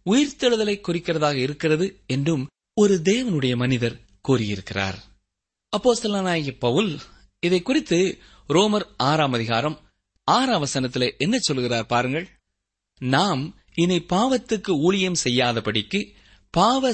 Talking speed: 90 wpm